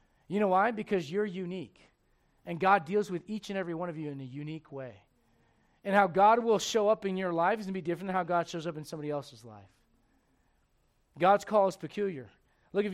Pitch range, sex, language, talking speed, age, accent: 165-215 Hz, male, English, 225 wpm, 40-59, American